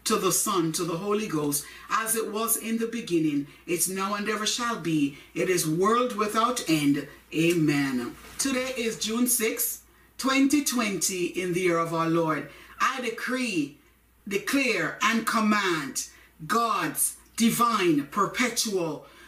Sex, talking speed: female, 135 wpm